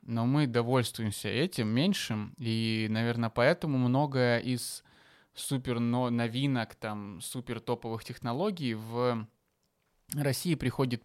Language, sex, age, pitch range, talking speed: Russian, male, 20-39, 115-145 Hz, 105 wpm